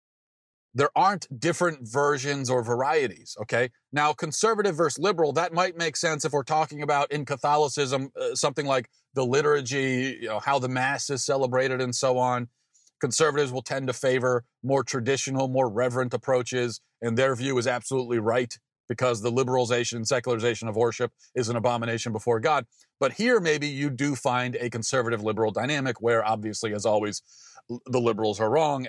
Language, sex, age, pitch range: English, male, 40-59, 120-155 Hz